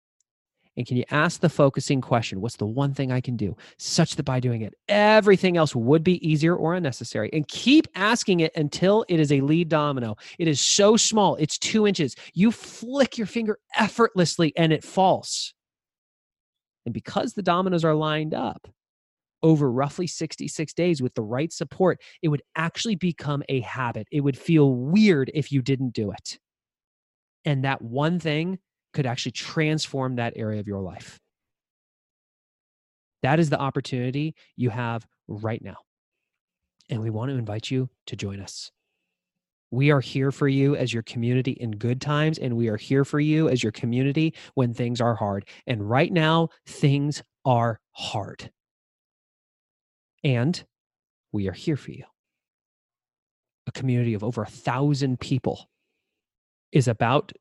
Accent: American